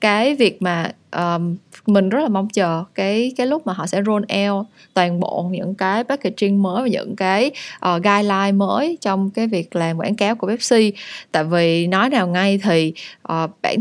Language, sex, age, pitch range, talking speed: Vietnamese, female, 20-39, 190-235 Hz, 195 wpm